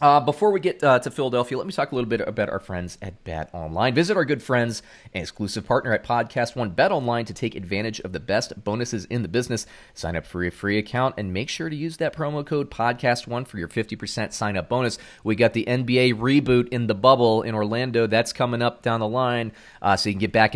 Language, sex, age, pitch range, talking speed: English, male, 30-49, 100-125 Hz, 250 wpm